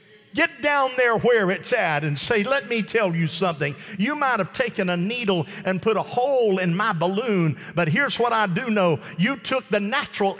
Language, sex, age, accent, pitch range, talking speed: English, male, 50-69, American, 200-275 Hz, 210 wpm